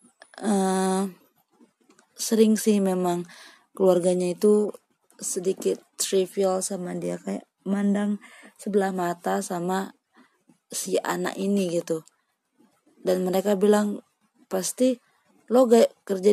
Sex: female